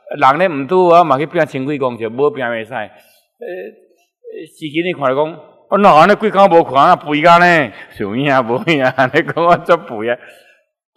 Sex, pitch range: male, 125-170 Hz